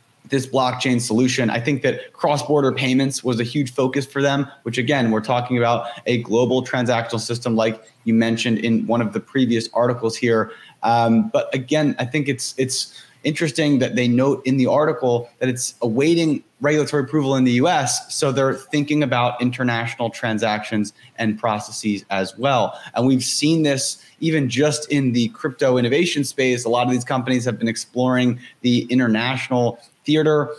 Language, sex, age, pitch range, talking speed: English, male, 20-39, 115-135 Hz, 170 wpm